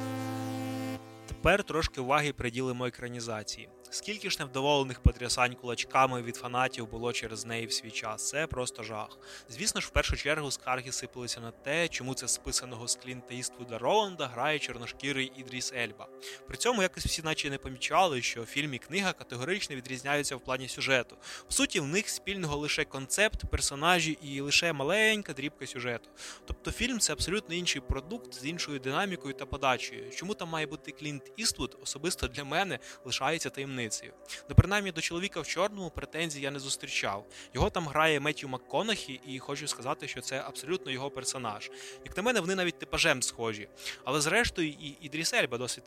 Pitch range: 125-160 Hz